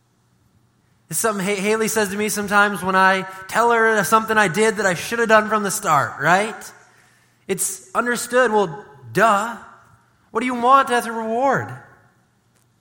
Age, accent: 20-39, American